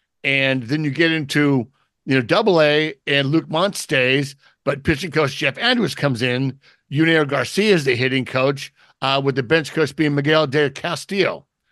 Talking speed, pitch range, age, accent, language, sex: 180 wpm, 135-165 Hz, 50-69, American, English, male